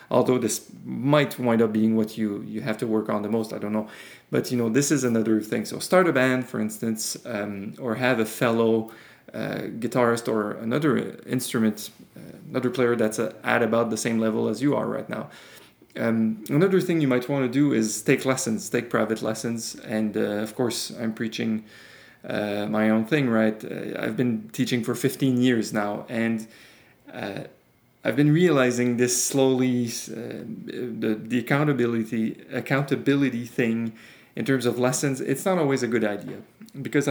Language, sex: English, male